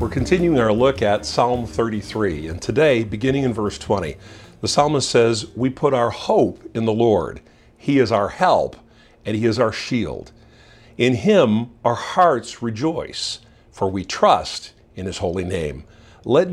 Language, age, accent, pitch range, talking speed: English, 50-69, American, 100-120 Hz, 165 wpm